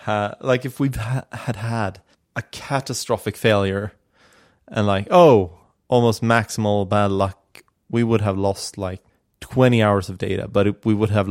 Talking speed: 155 wpm